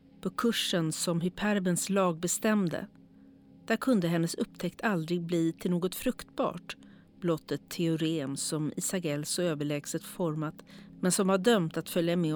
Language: Swedish